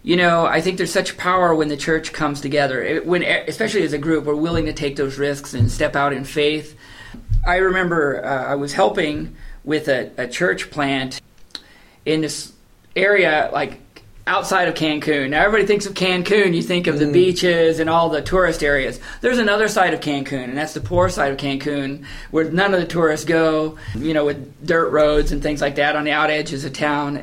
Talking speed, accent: 210 wpm, American